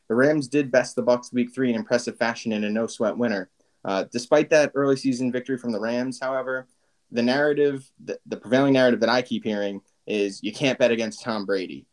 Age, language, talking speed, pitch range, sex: 20-39, English, 215 wpm, 110-135 Hz, male